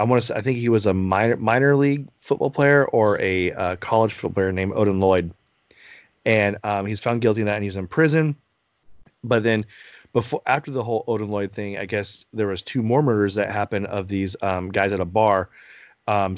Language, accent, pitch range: English, American, 100-125 Hz